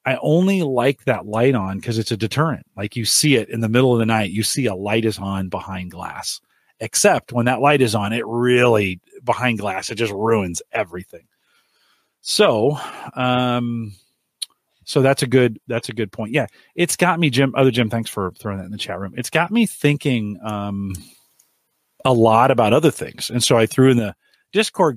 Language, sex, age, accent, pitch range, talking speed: English, male, 40-59, American, 105-135 Hz, 200 wpm